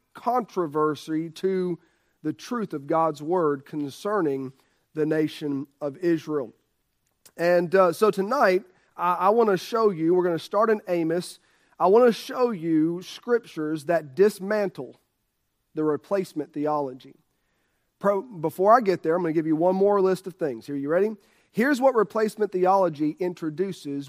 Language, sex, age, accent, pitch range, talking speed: English, male, 40-59, American, 155-215 Hz, 150 wpm